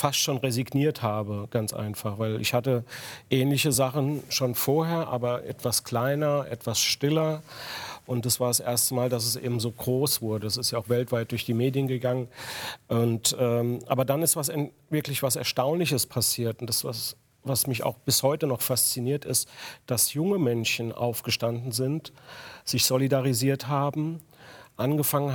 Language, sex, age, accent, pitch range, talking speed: German, male, 40-59, German, 120-140 Hz, 165 wpm